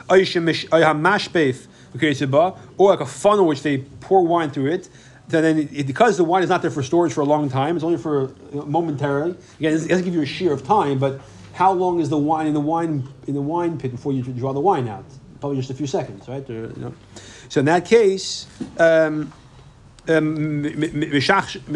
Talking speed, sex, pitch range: 195 wpm, male, 140-180 Hz